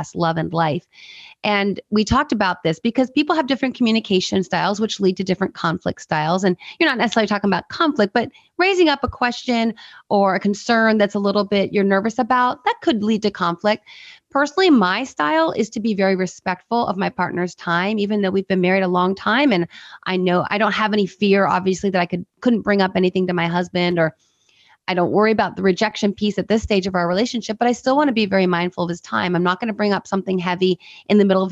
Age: 30-49